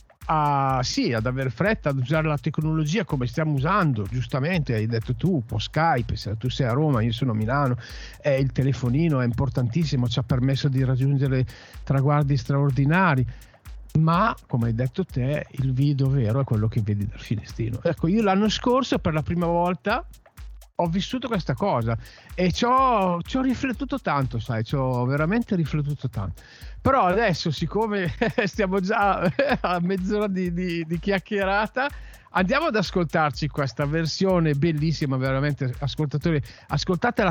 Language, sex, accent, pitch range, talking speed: Italian, male, native, 130-185 Hz, 155 wpm